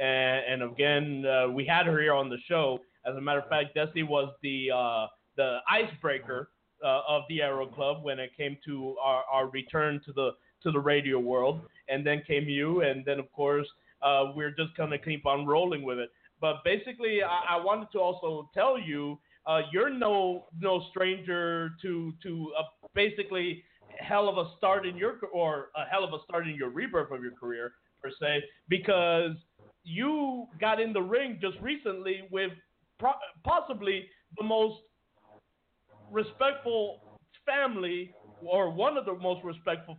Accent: American